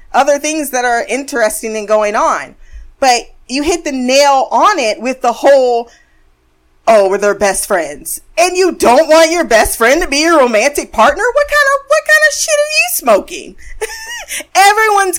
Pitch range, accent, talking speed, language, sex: 210-320 Hz, American, 180 wpm, English, female